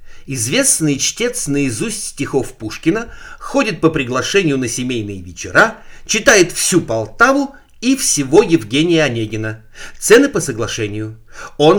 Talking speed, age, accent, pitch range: 110 wpm, 60-79, native, 100-165 Hz